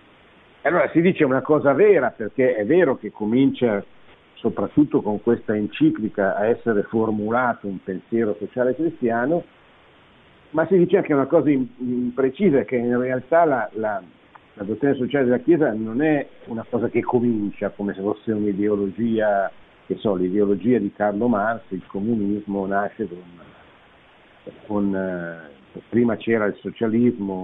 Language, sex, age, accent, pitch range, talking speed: Italian, male, 50-69, native, 100-130 Hz, 140 wpm